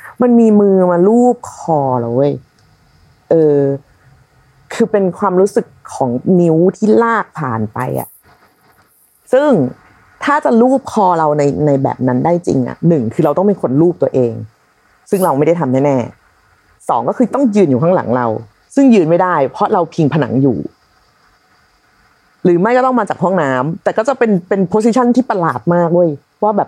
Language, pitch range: Thai, 145-230 Hz